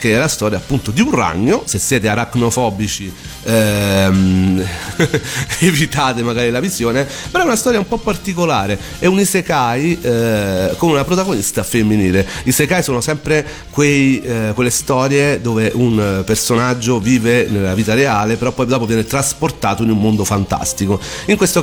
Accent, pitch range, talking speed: native, 100-135 Hz, 160 wpm